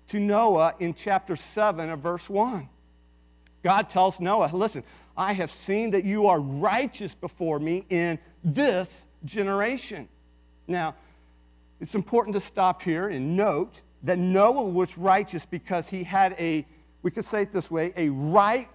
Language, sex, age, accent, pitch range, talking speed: English, male, 50-69, American, 135-215 Hz, 155 wpm